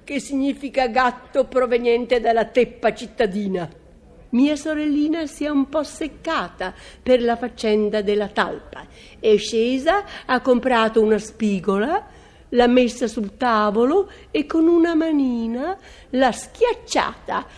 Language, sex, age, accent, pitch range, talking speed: Italian, female, 60-79, native, 220-310 Hz, 120 wpm